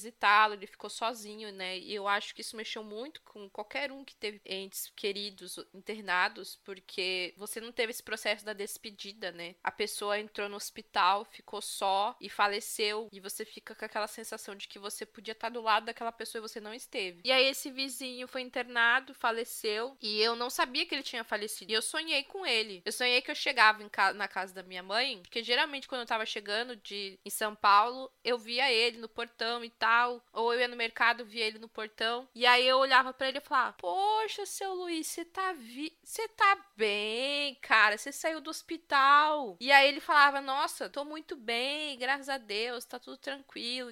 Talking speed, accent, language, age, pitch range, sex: 200 wpm, Brazilian, Portuguese, 10-29, 215-280 Hz, female